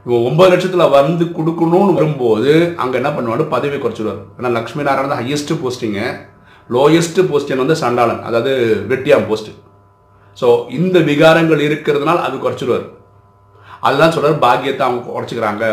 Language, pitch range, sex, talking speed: Tamil, 105-160 Hz, male, 120 wpm